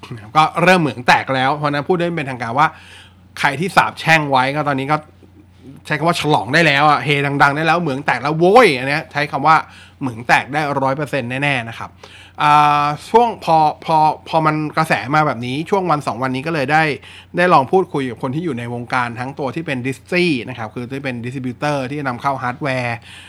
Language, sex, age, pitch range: Thai, male, 20-39, 125-155 Hz